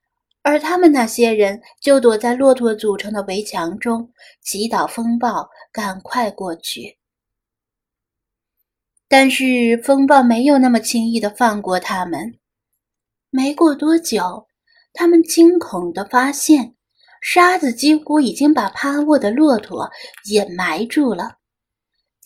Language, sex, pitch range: Chinese, female, 210-290 Hz